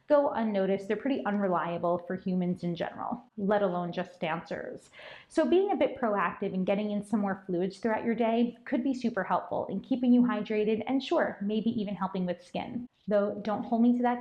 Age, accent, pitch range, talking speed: 20-39, American, 195-240 Hz, 205 wpm